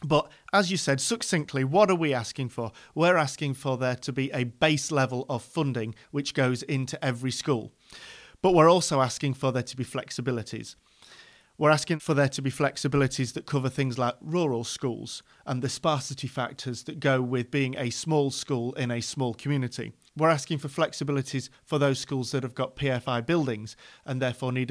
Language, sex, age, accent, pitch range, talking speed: English, male, 40-59, British, 130-155 Hz, 190 wpm